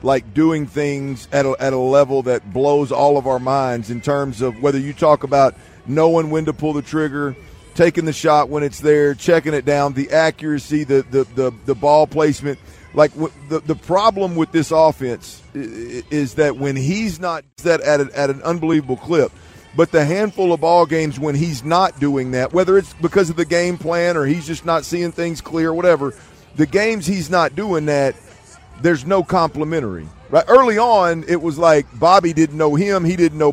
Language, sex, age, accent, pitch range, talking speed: English, male, 40-59, American, 145-175 Hz, 195 wpm